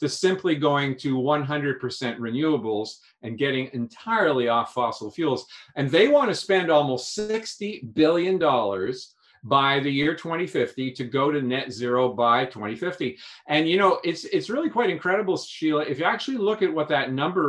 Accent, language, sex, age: American, English, male, 50-69